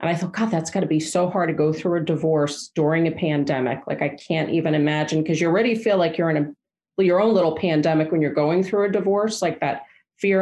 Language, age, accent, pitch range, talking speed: English, 40-59, American, 155-190 Hz, 255 wpm